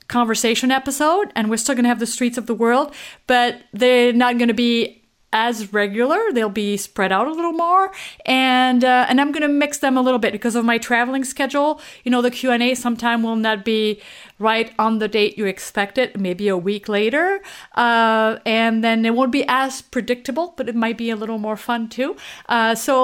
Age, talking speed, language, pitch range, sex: 30-49, 215 wpm, English, 210-255 Hz, female